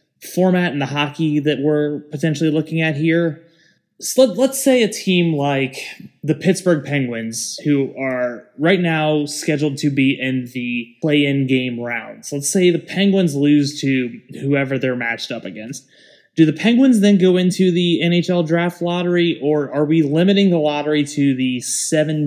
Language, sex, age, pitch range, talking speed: English, male, 20-39, 125-155 Hz, 160 wpm